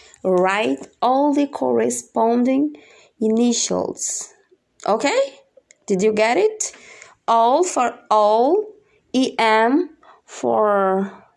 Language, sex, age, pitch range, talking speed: English, female, 20-39, 185-260 Hz, 80 wpm